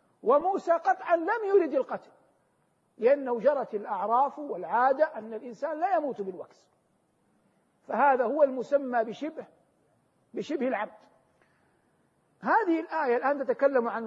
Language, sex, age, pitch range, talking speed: Arabic, male, 50-69, 230-305 Hz, 105 wpm